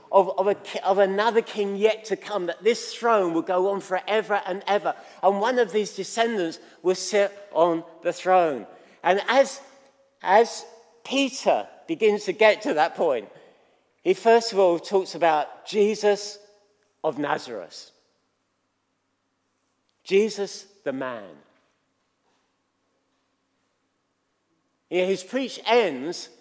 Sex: male